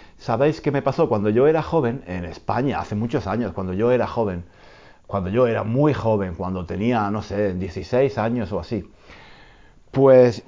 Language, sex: Spanish, male